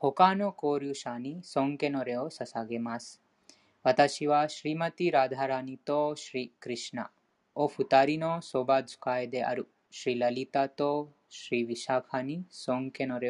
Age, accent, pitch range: 20-39, Indian, 125-150 Hz